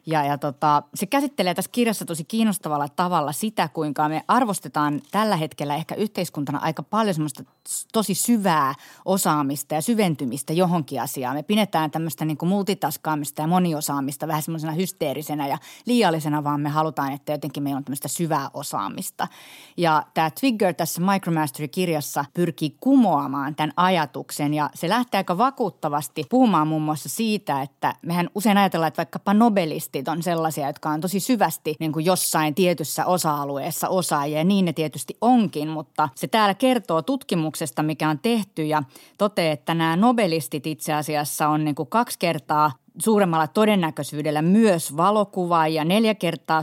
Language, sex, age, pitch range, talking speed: Finnish, female, 30-49, 155-190 Hz, 155 wpm